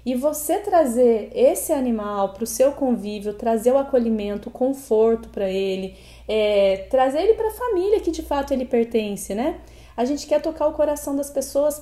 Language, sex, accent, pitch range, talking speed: Portuguese, female, Brazilian, 220-275 Hz, 185 wpm